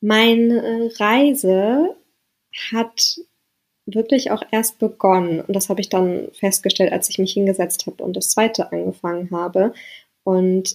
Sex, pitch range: female, 185-230 Hz